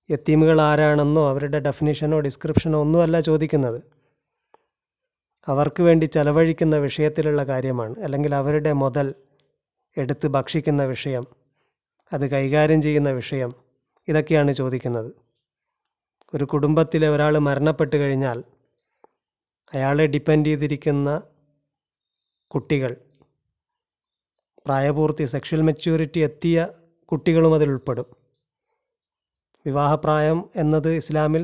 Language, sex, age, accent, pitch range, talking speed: Malayalam, male, 30-49, native, 145-160 Hz, 80 wpm